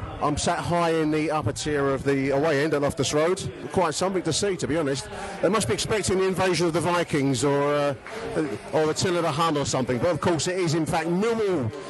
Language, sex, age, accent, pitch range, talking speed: English, male, 40-59, British, 145-175 Hz, 230 wpm